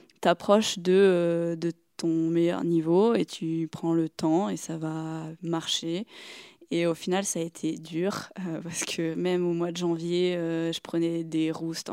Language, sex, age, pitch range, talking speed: French, female, 20-39, 170-210 Hz, 180 wpm